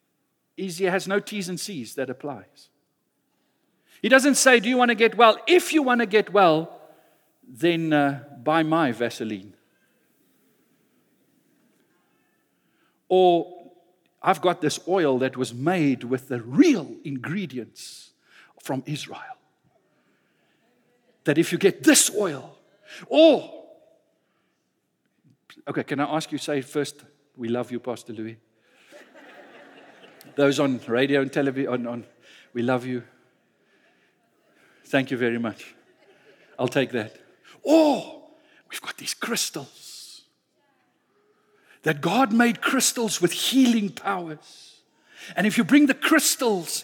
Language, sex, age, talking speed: English, male, 60-79, 125 wpm